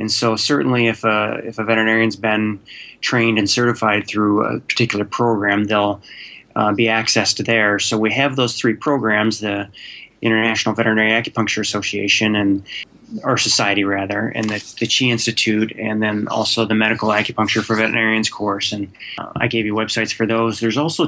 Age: 20-39